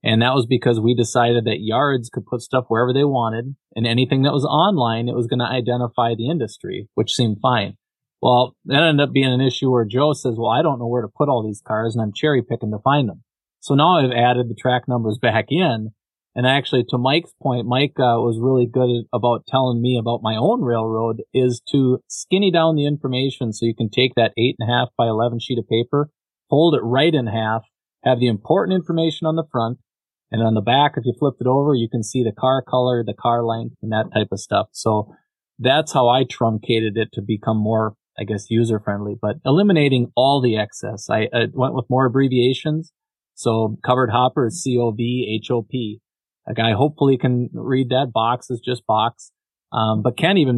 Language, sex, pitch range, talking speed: English, male, 115-135 Hz, 220 wpm